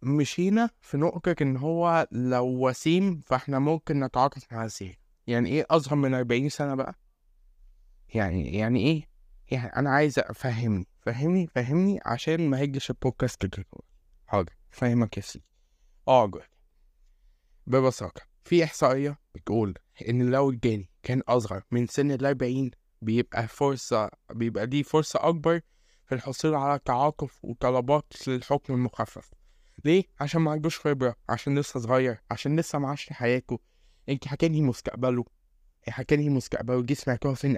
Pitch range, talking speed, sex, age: 115-150 Hz, 135 wpm, male, 20-39